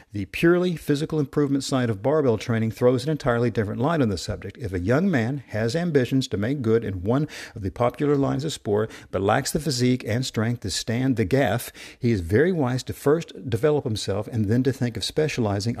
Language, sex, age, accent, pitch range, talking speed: English, male, 50-69, American, 100-130 Hz, 215 wpm